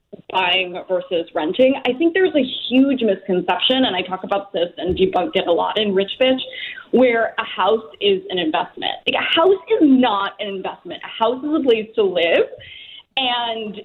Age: 20-39